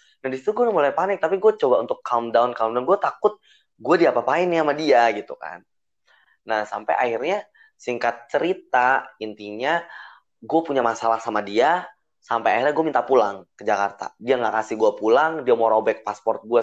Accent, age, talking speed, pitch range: native, 20-39, 190 wpm, 110-145 Hz